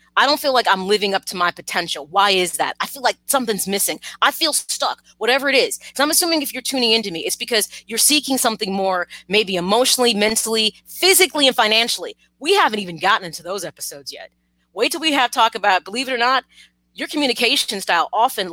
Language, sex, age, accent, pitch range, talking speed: English, female, 30-49, American, 170-240 Hz, 215 wpm